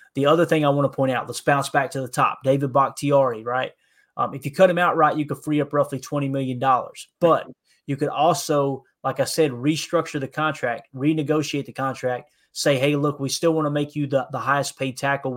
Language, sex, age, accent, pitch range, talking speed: English, male, 20-39, American, 130-145 Hz, 225 wpm